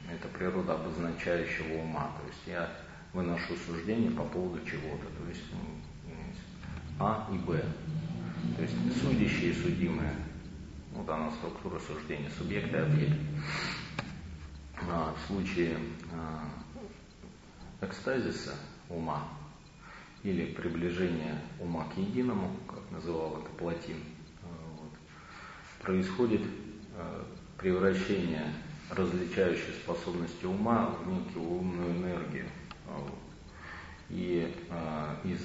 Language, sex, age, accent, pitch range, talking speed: Russian, male, 40-59, native, 80-90 Hz, 90 wpm